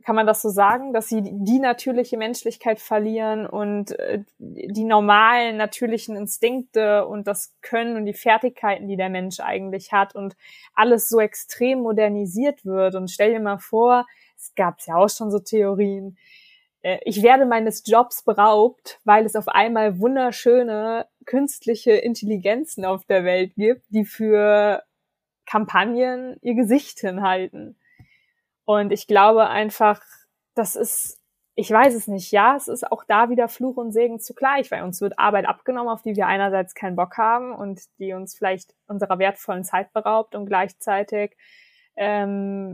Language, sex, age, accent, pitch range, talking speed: German, female, 20-39, German, 195-230 Hz, 160 wpm